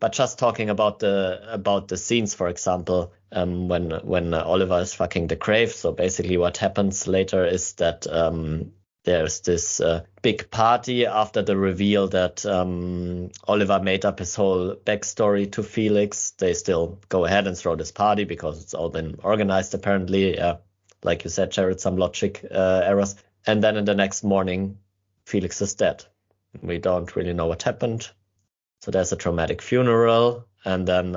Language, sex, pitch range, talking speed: English, male, 90-105 Hz, 170 wpm